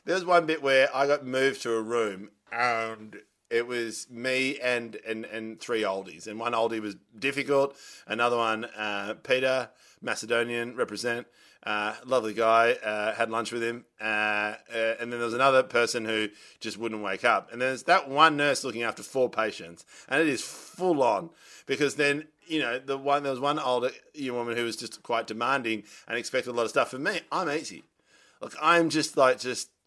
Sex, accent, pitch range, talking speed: male, Australian, 110-135 Hz, 195 wpm